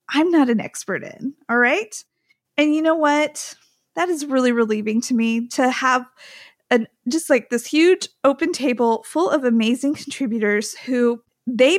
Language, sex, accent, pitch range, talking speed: English, female, American, 240-310 Hz, 160 wpm